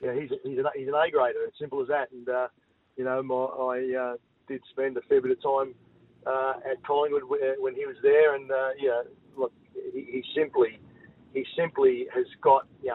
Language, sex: English, male